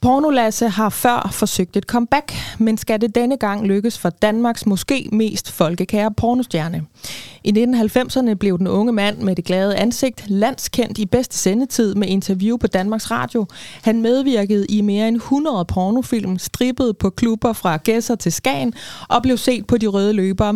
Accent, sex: native, female